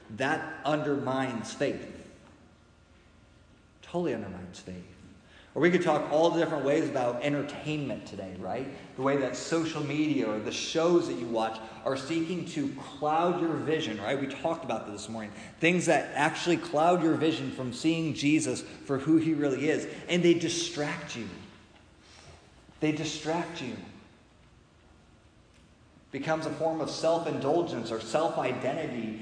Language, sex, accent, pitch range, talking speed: English, male, American, 110-160 Hz, 140 wpm